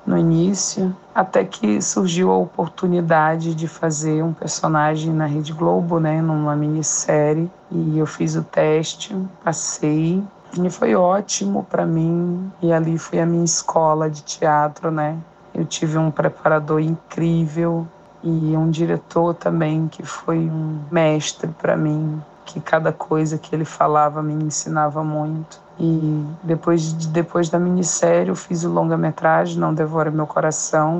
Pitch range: 150-170 Hz